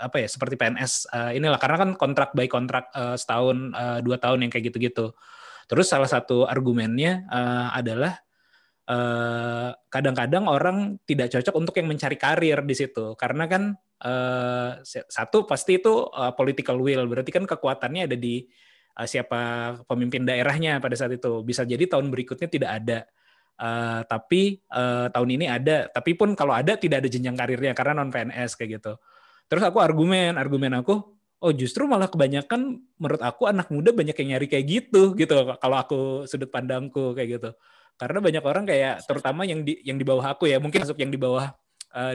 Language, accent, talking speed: Indonesian, native, 175 wpm